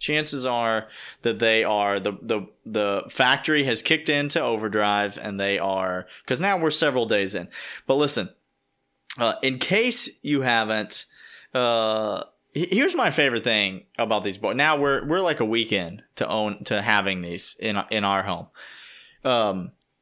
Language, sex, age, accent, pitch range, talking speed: English, male, 30-49, American, 105-140 Hz, 160 wpm